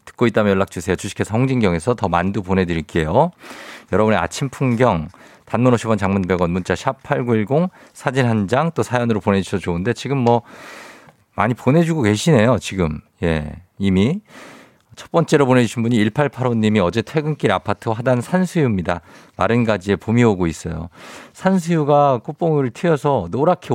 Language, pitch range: Korean, 95-145 Hz